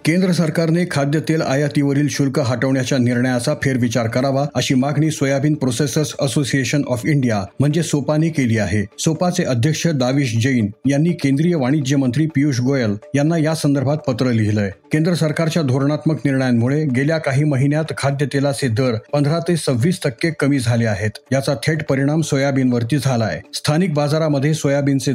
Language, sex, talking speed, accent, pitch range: Marathi, male, 135 wpm, native, 130-155 Hz